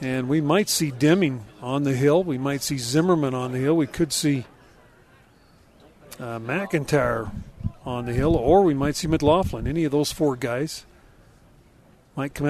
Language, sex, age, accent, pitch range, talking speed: English, male, 40-59, American, 135-165 Hz, 170 wpm